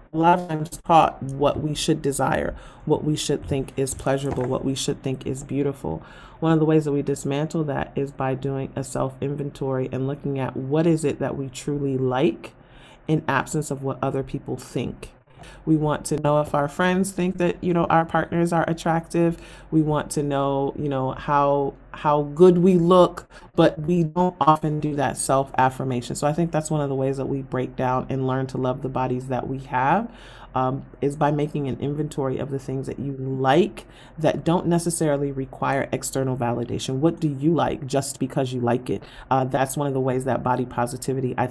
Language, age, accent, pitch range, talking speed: English, 30-49, American, 130-150 Hz, 205 wpm